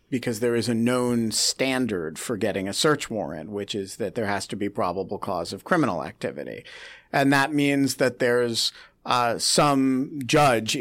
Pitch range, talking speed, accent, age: 115-135 Hz, 170 wpm, American, 50-69